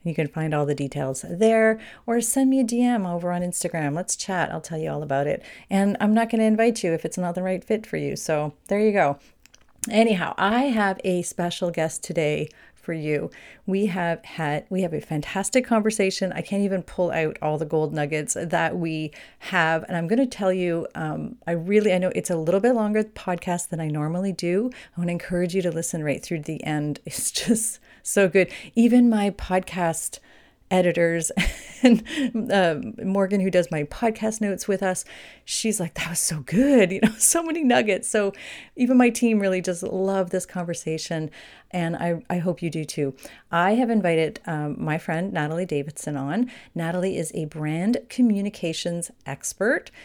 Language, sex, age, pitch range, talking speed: English, female, 40-59, 160-205 Hz, 195 wpm